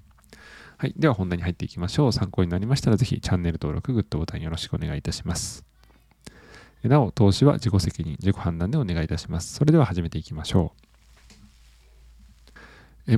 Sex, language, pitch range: male, Japanese, 90-125 Hz